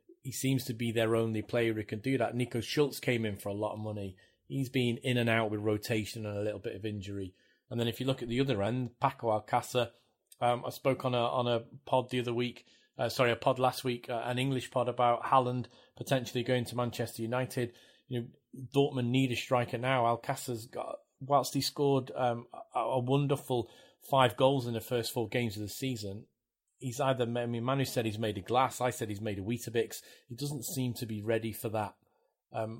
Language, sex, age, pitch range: English, male, 30-49, 115-130 Hz